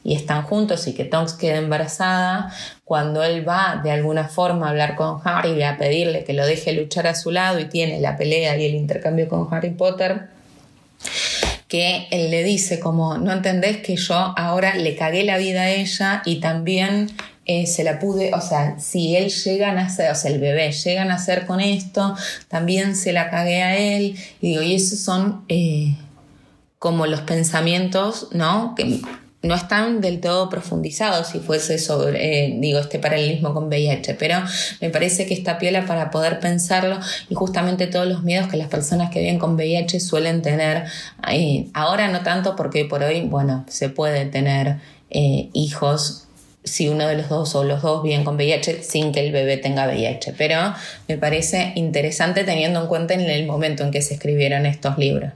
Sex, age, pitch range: female, 20-39, 150-185 Hz